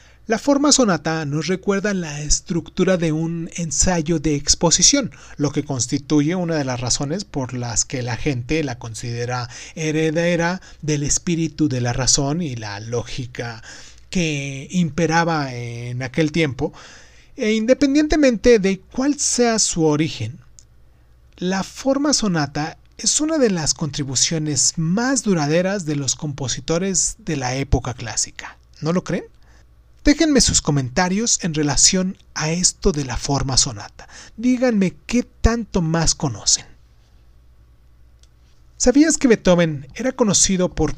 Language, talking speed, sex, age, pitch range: Spanish, 130 wpm, male, 30-49, 130-180 Hz